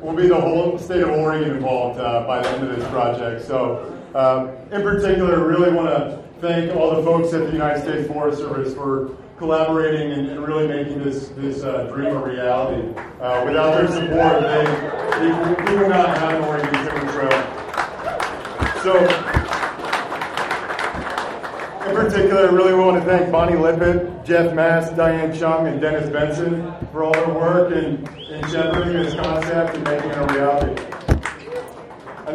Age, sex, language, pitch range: 30-49, male, English, 145-175 Hz